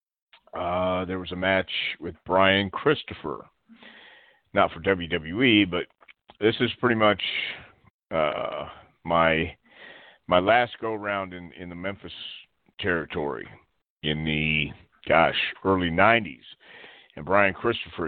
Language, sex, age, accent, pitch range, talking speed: English, male, 50-69, American, 85-110 Hz, 115 wpm